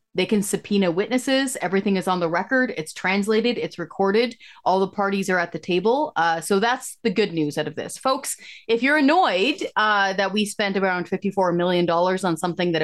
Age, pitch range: 30-49, 185-250 Hz